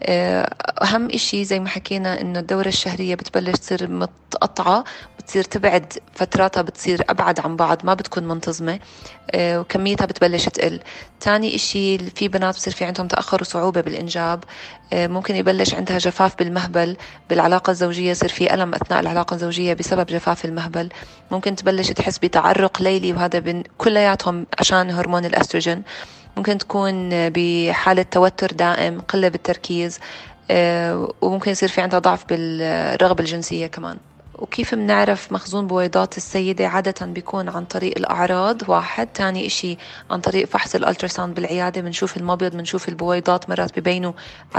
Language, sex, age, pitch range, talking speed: Arabic, female, 20-39, 175-190 Hz, 135 wpm